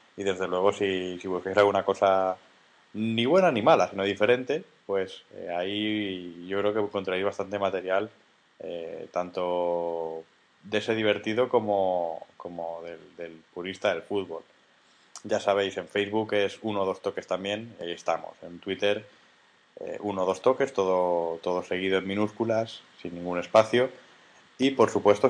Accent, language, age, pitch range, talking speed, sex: Spanish, Spanish, 20-39, 90-105 Hz, 155 wpm, male